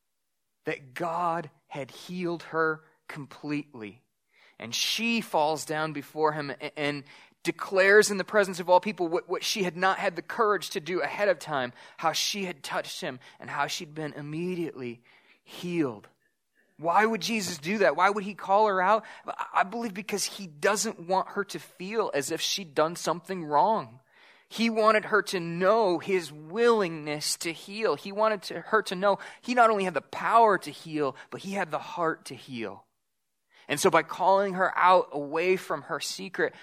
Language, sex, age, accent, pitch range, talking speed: English, male, 20-39, American, 155-205 Hz, 180 wpm